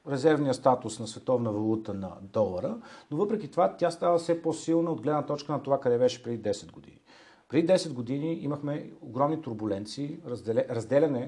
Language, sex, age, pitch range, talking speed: Bulgarian, male, 40-59, 115-155 Hz, 165 wpm